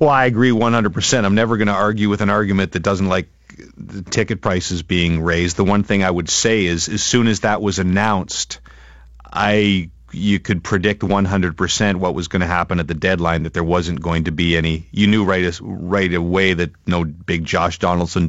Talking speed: 210 wpm